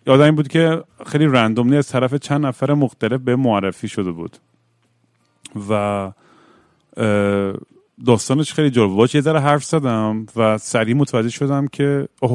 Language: Persian